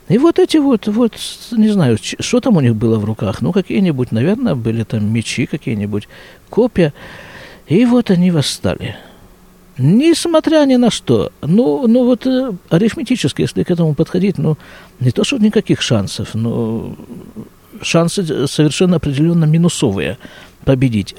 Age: 50-69